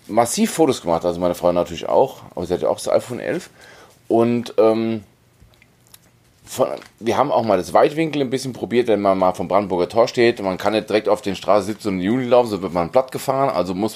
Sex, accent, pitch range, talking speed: male, German, 100-140 Hz, 230 wpm